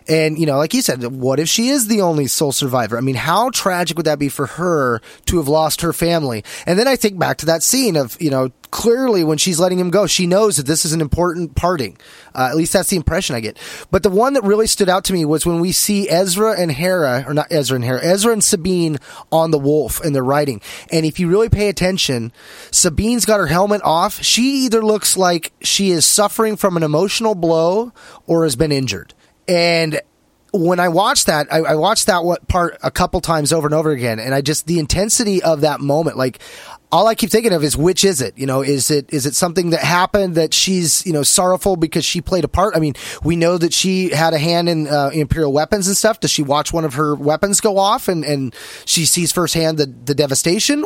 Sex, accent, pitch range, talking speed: male, American, 150-195 Hz, 240 wpm